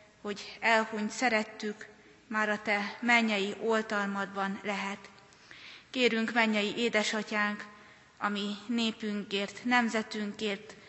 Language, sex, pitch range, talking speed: Hungarian, female, 200-215 Hz, 85 wpm